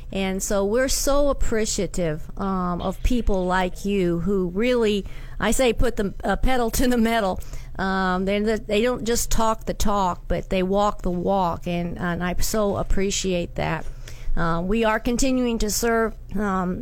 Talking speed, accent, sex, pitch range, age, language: 170 wpm, American, female, 190-225 Hz, 50-69, English